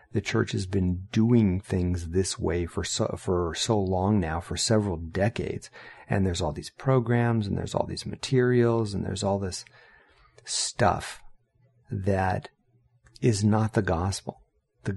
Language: English